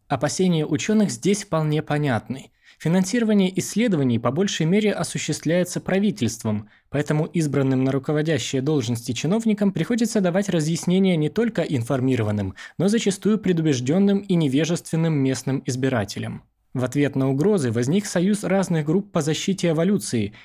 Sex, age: male, 20-39